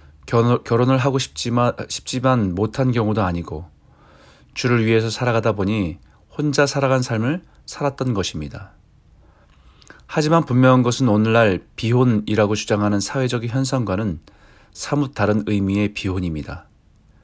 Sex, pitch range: male, 105-130 Hz